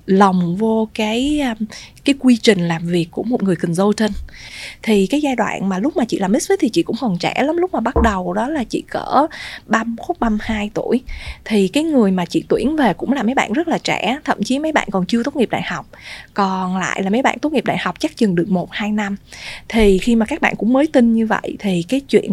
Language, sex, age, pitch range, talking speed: Vietnamese, female, 20-39, 190-250 Hz, 245 wpm